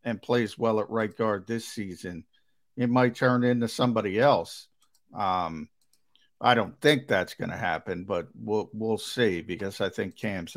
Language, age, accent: English, 50-69, American